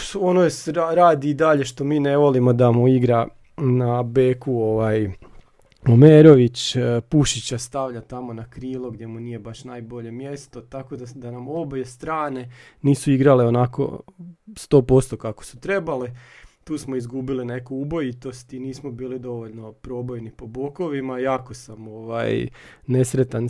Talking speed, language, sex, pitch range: 145 wpm, Croatian, male, 125-155 Hz